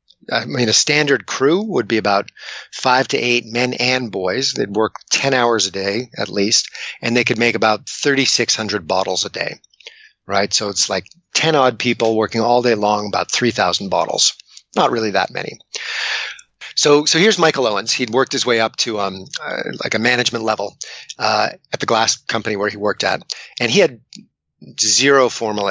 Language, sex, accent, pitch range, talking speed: English, male, American, 110-140 Hz, 185 wpm